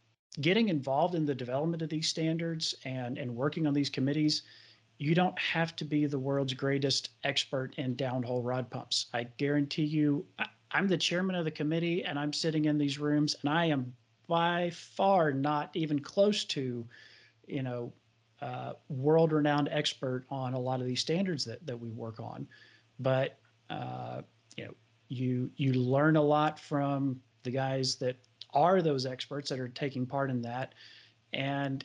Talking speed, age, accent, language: 170 wpm, 40-59, American, English